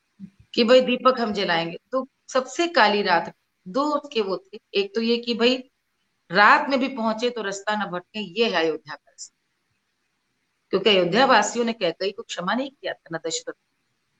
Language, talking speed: Hindi, 170 wpm